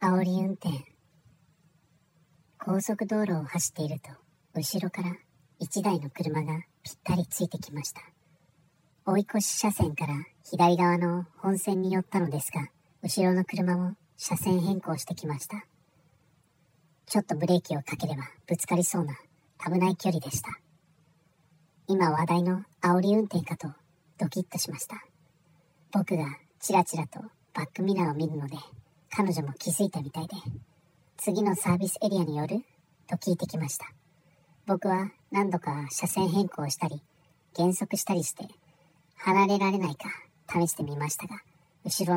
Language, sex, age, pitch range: Japanese, male, 40-59, 155-185 Hz